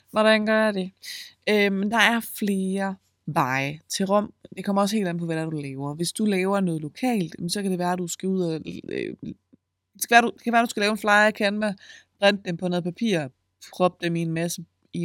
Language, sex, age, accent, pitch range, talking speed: Danish, female, 20-39, native, 140-190 Hz, 220 wpm